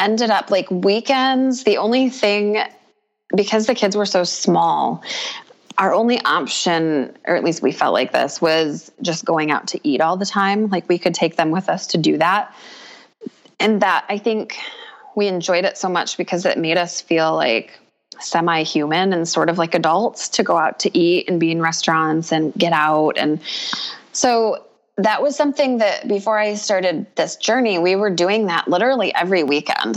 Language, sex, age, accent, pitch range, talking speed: English, female, 20-39, American, 160-210 Hz, 185 wpm